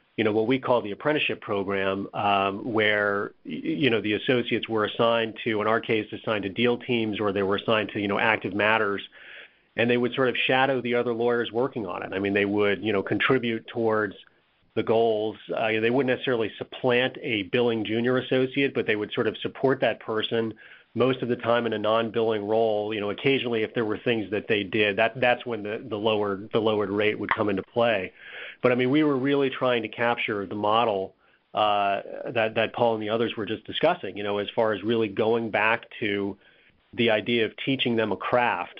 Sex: male